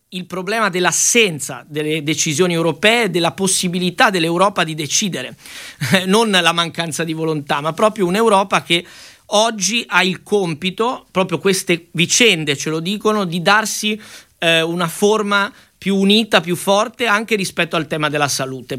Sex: male